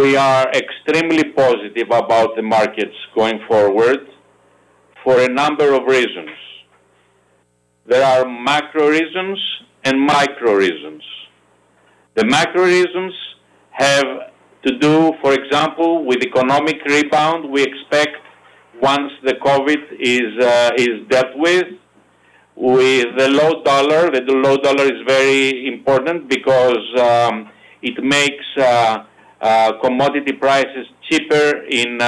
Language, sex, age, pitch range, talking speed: English, male, 50-69, 125-155 Hz, 115 wpm